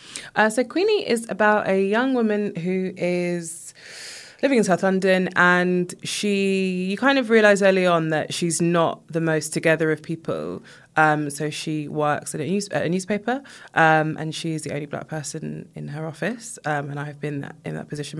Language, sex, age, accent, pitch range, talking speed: English, female, 20-39, British, 150-185 Hz, 180 wpm